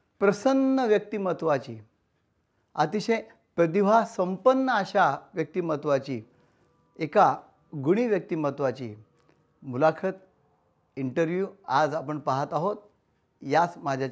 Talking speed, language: 75 wpm, Marathi